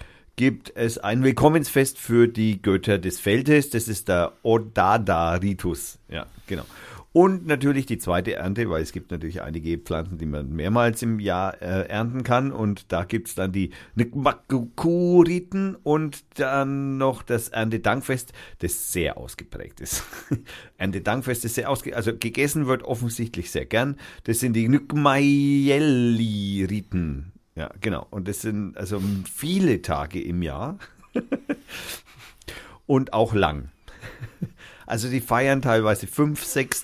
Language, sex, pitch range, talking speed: German, male, 100-130 Hz, 135 wpm